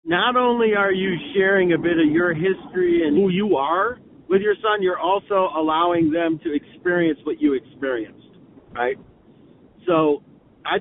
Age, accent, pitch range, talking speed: 50-69, American, 155-195 Hz, 160 wpm